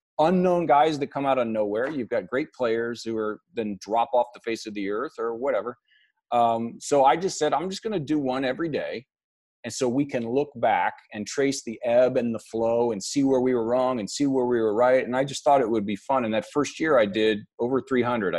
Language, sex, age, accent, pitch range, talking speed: English, male, 40-59, American, 110-150 Hz, 250 wpm